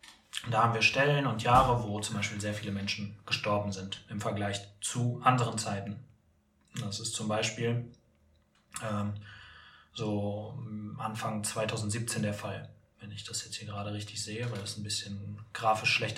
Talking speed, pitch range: 160 wpm, 105-120 Hz